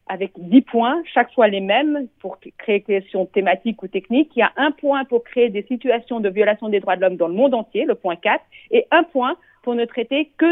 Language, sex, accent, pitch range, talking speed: Italian, female, French, 180-240 Hz, 240 wpm